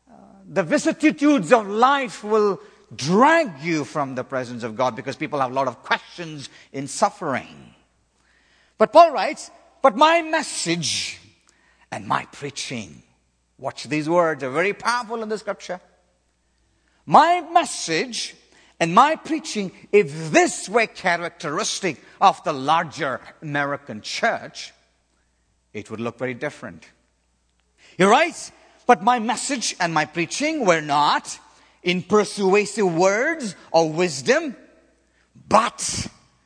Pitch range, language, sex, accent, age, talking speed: 130-220 Hz, English, male, Indian, 50-69, 120 wpm